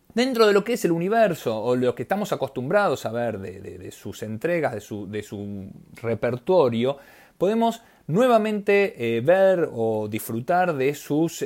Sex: male